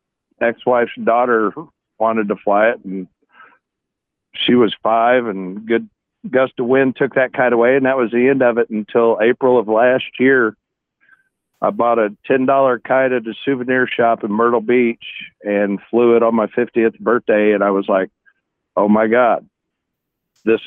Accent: American